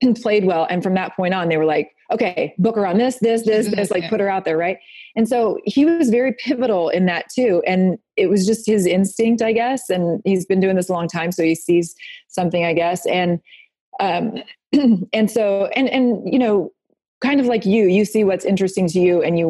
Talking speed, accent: 230 wpm, American